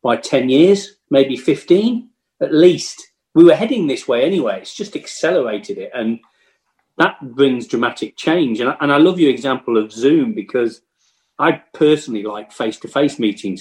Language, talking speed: English, 170 wpm